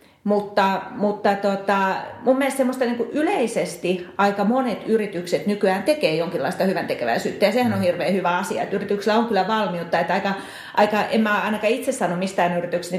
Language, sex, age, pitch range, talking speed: Finnish, female, 30-49, 185-220 Hz, 160 wpm